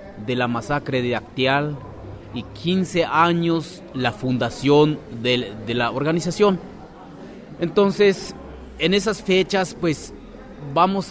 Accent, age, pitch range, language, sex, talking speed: Mexican, 30-49, 125-170 Hz, Spanish, male, 105 wpm